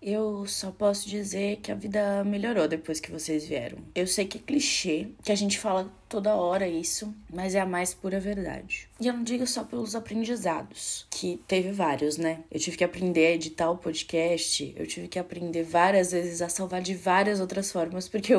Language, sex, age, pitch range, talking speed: Portuguese, female, 20-39, 180-225 Hz, 200 wpm